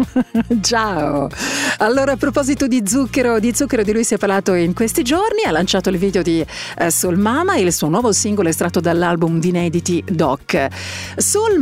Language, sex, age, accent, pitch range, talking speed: Italian, female, 50-69, native, 175-240 Hz, 180 wpm